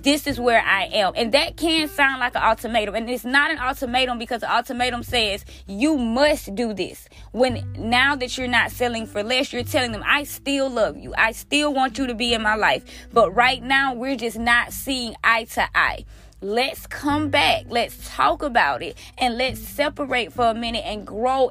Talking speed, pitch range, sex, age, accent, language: 205 wpm, 220-275 Hz, female, 20-39, American, English